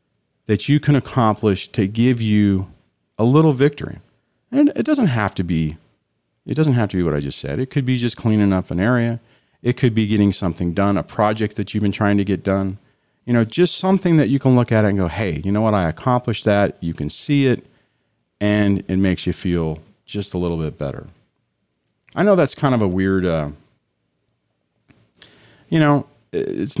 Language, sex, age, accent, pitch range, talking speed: English, male, 40-59, American, 90-125 Hz, 205 wpm